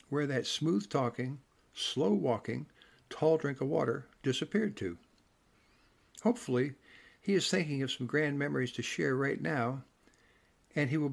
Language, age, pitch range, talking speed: English, 60-79, 120-150 Hz, 135 wpm